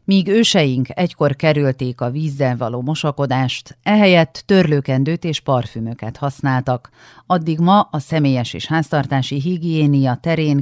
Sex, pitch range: female, 125-160 Hz